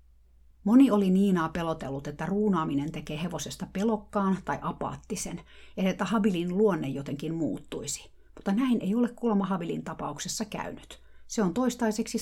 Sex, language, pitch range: female, Finnish, 155-215 Hz